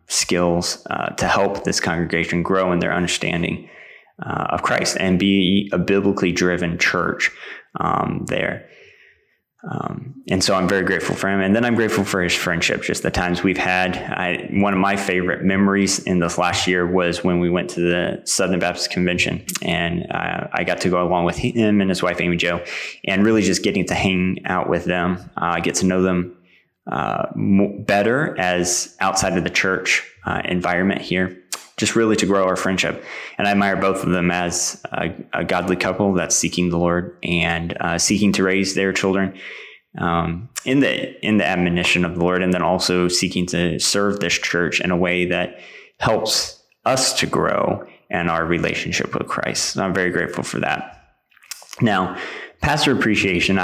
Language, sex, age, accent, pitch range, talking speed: English, male, 20-39, American, 90-100 Hz, 185 wpm